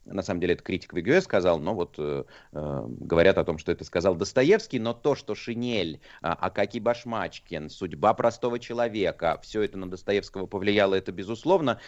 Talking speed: 170 wpm